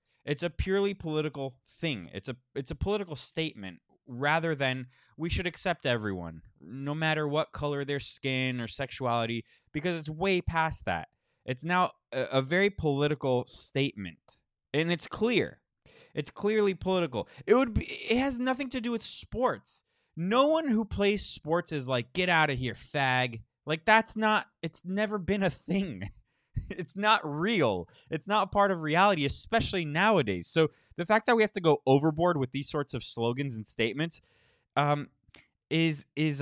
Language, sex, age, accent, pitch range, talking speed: English, male, 20-39, American, 130-195 Hz, 170 wpm